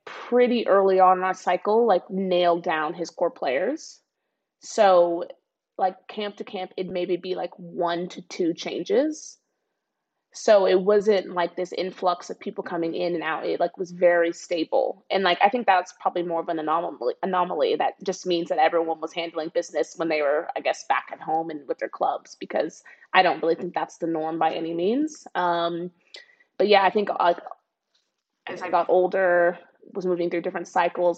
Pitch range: 170-205 Hz